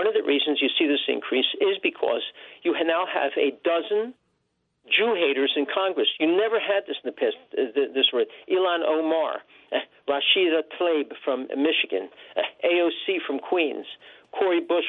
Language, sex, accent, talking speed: English, male, American, 170 wpm